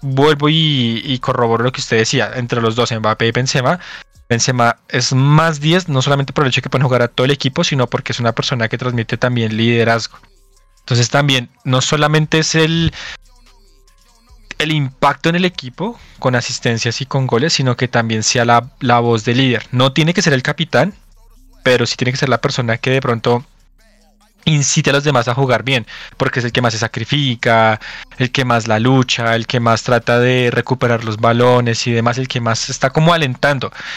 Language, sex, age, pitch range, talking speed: Spanish, male, 20-39, 120-145 Hz, 205 wpm